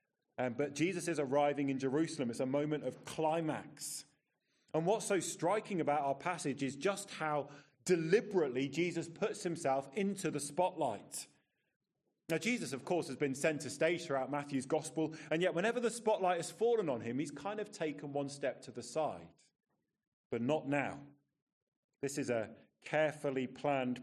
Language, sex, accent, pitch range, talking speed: English, male, British, 125-160 Hz, 165 wpm